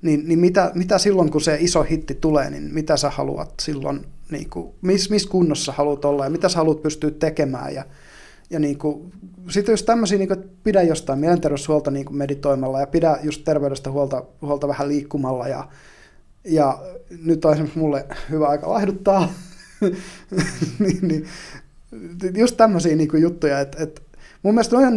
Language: Finnish